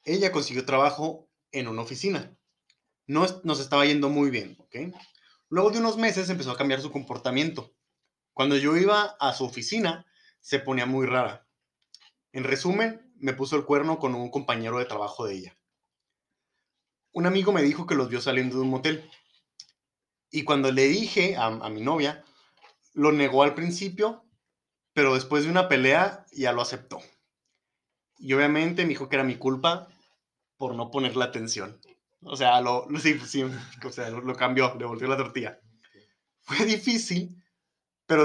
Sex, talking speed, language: male, 165 wpm, Spanish